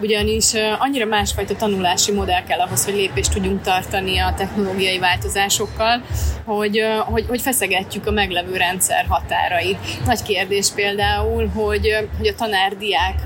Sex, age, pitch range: female, 20-39, 195-220 Hz